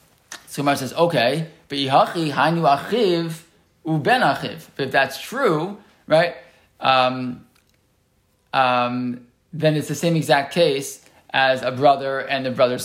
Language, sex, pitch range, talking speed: English, male, 130-170 Hz, 105 wpm